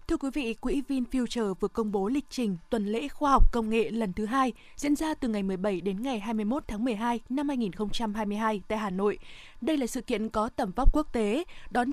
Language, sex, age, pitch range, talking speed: Vietnamese, female, 20-39, 215-265 Hz, 220 wpm